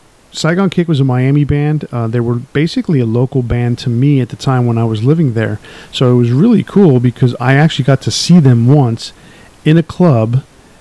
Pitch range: 115-135 Hz